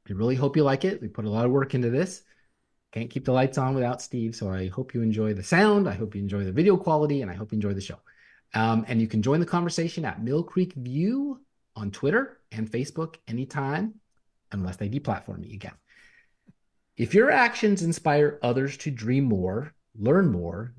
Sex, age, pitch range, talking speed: male, 30-49, 105-150 Hz, 210 wpm